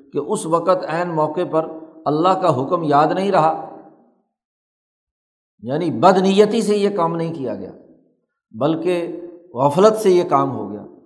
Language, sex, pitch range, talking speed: Urdu, male, 140-170 Hz, 150 wpm